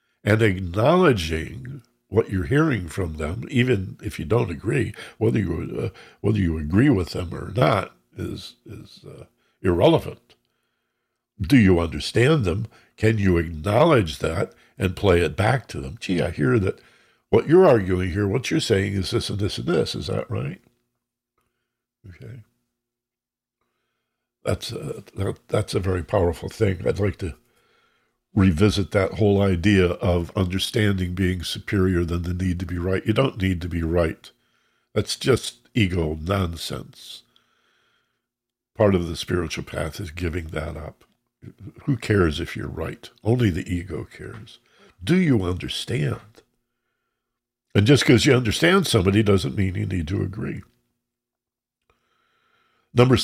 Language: English